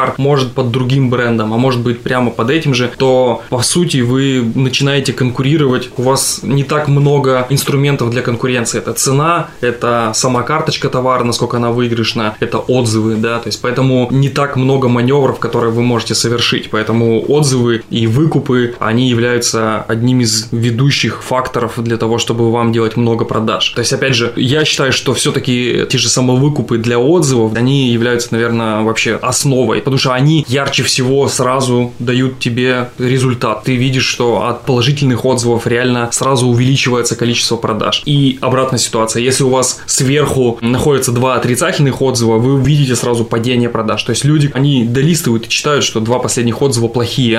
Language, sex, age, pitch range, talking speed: Russian, male, 20-39, 120-135 Hz, 165 wpm